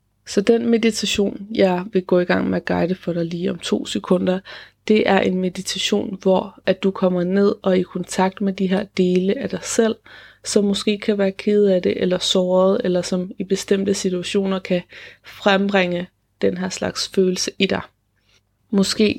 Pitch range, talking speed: 185-210 Hz, 185 wpm